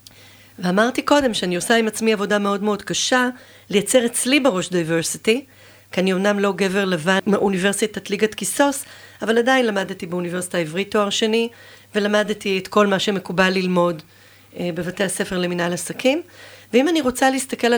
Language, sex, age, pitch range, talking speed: Hebrew, female, 40-59, 180-230 Hz, 150 wpm